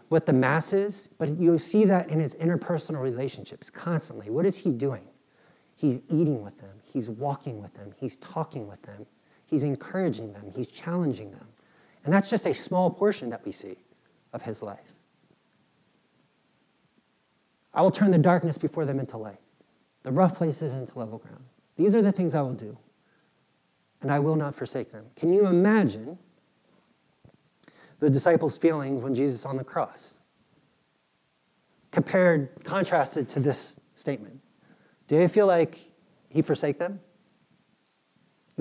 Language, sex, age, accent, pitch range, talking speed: English, male, 40-59, American, 135-180 Hz, 150 wpm